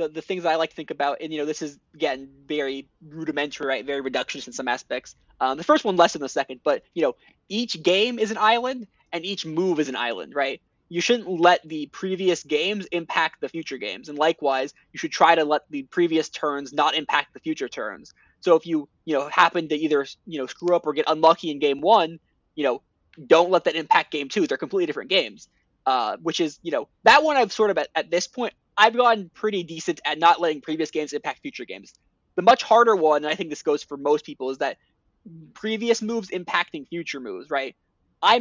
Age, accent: 20-39, American